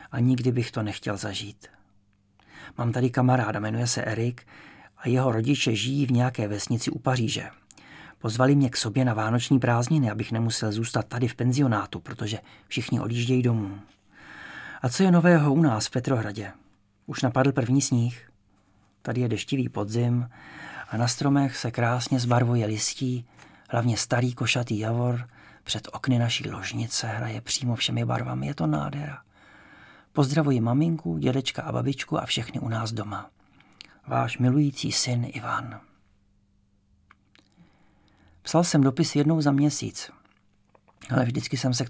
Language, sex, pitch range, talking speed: English, male, 110-135 Hz, 145 wpm